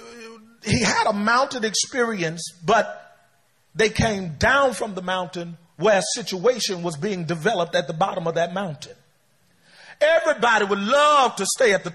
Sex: male